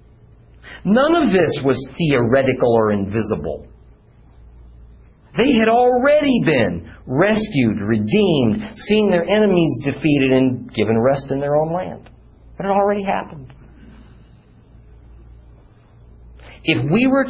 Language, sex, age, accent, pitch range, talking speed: English, male, 50-69, American, 100-155 Hz, 110 wpm